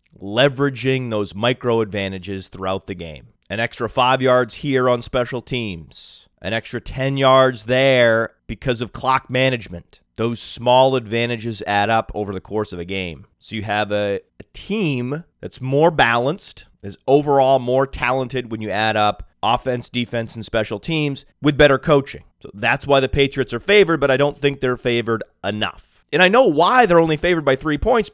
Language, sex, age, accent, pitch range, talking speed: English, male, 30-49, American, 110-140 Hz, 175 wpm